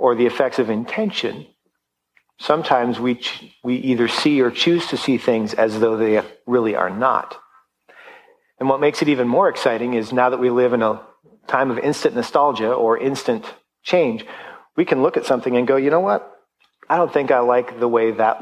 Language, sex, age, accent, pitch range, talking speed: English, male, 40-59, American, 120-145 Hz, 200 wpm